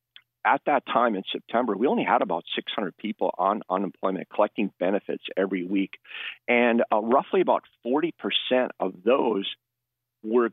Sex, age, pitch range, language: male, 40-59, 105-125 Hz, English